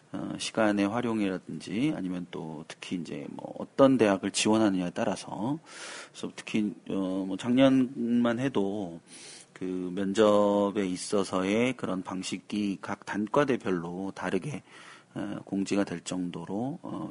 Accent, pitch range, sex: native, 90-110 Hz, male